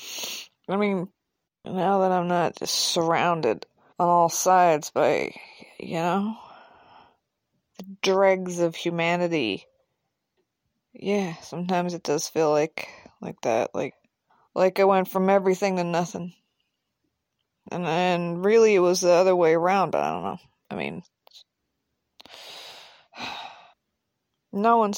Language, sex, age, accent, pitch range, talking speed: English, female, 20-39, American, 170-195 Hz, 120 wpm